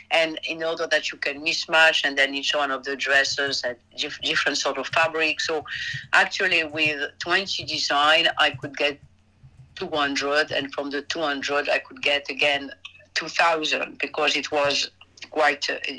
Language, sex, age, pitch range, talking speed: English, female, 50-69, 140-175 Hz, 175 wpm